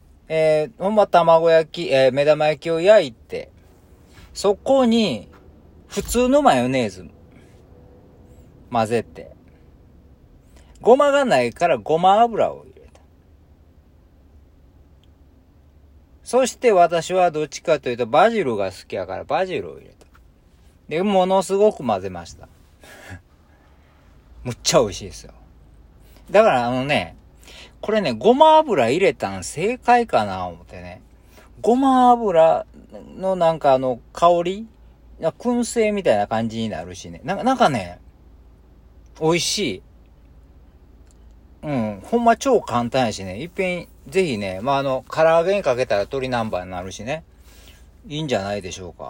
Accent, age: native, 40-59